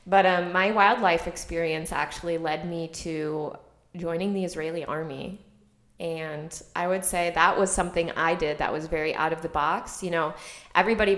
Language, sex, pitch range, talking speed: English, female, 160-185 Hz, 170 wpm